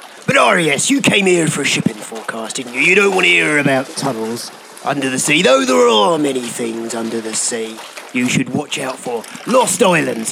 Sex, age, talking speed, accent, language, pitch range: male, 40-59, 210 wpm, British, English, 125-190 Hz